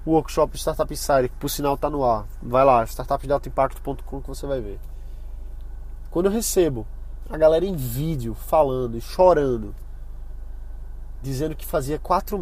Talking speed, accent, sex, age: 145 wpm, Brazilian, male, 20-39